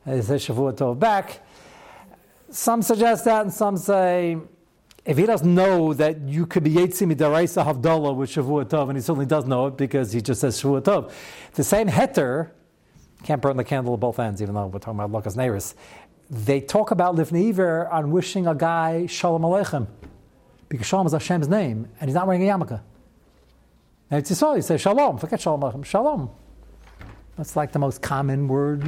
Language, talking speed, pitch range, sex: English, 185 wpm, 140-195 Hz, male